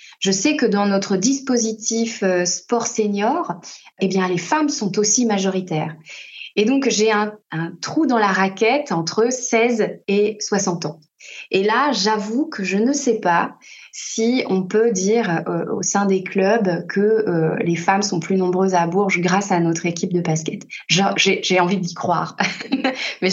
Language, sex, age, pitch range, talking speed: French, female, 20-39, 180-215 Hz, 170 wpm